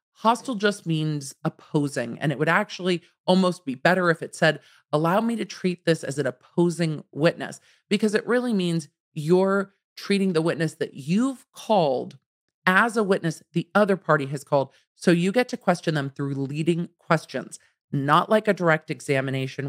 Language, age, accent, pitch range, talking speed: English, 40-59, American, 140-180 Hz, 170 wpm